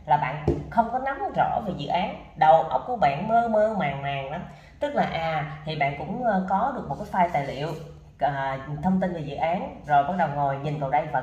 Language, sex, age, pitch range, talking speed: Vietnamese, female, 20-39, 145-200 Hz, 240 wpm